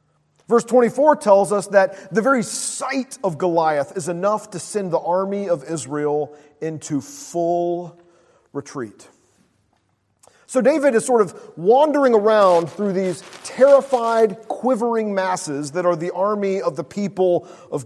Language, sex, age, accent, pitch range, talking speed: English, male, 40-59, American, 170-240 Hz, 140 wpm